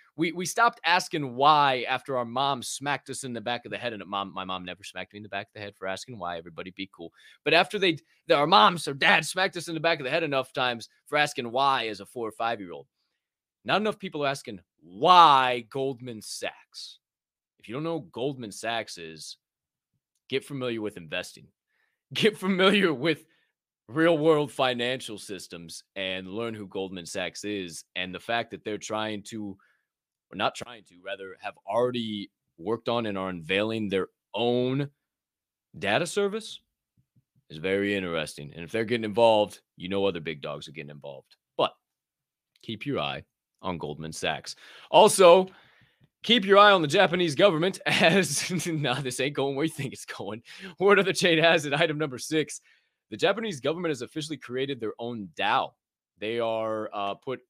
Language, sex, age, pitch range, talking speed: English, male, 20-39, 100-155 Hz, 190 wpm